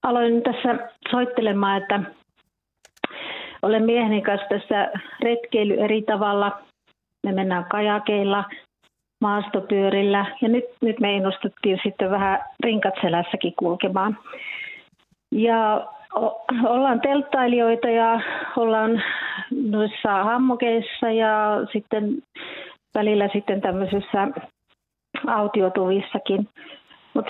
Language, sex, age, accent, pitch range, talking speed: Finnish, female, 40-59, native, 205-240 Hz, 85 wpm